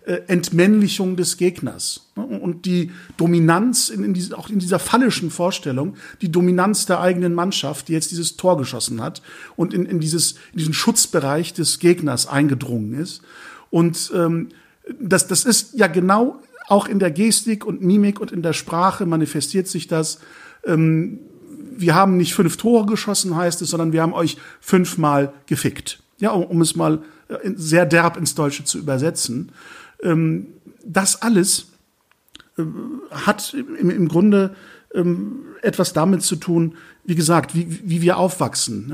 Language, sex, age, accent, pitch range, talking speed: German, male, 50-69, German, 160-195 Hz, 140 wpm